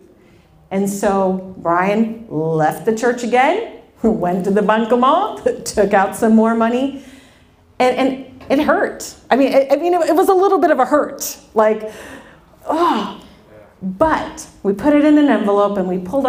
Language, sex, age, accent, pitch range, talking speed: English, female, 40-59, American, 185-240 Hz, 165 wpm